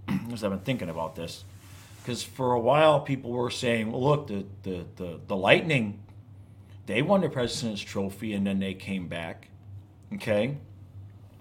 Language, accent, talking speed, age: English, American, 165 wpm, 40-59